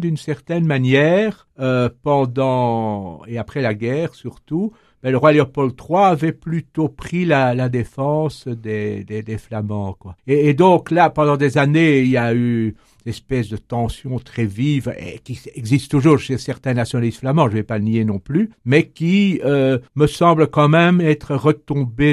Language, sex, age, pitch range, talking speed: French, male, 60-79, 115-145 Hz, 180 wpm